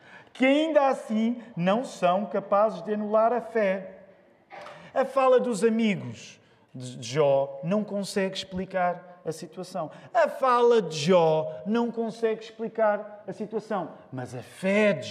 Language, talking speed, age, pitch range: Portuguese, 135 wpm, 40-59, 185-260 Hz